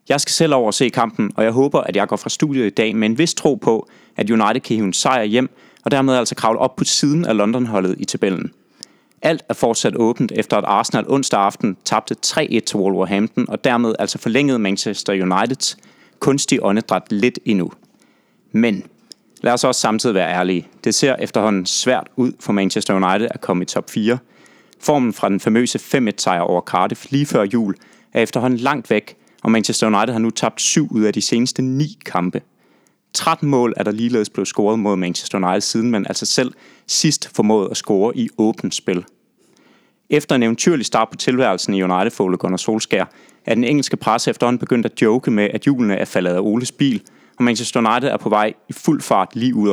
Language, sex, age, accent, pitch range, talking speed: Danish, male, 30-49, native, 105-135 Hz, 200 wpm